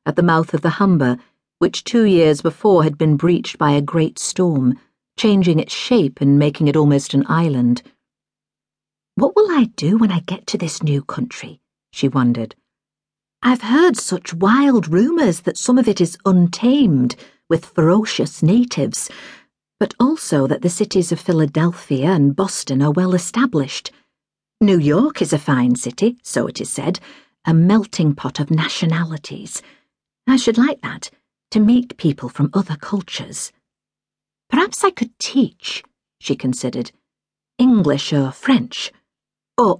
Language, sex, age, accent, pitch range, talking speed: English, female, 50-69, British, 150-210 Hz, 150 wpm